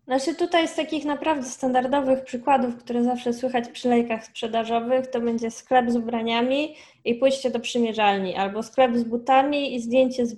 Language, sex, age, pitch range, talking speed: Polish, female, 10-29, 225-255 Hz, 170 wpm